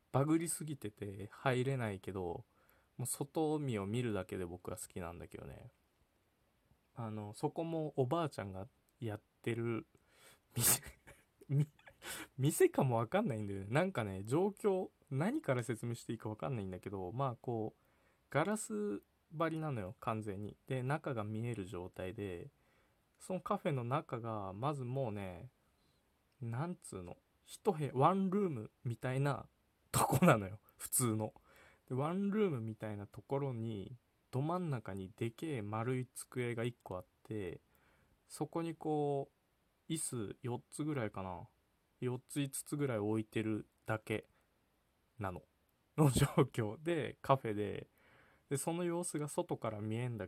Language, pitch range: Japanese, 105-150 Hz